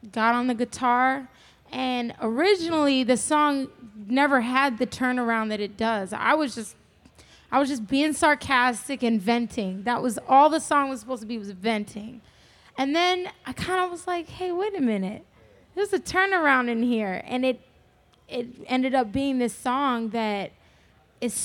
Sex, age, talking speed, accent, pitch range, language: female, 20-39, 175 wpm, American, 220-270 Hz, English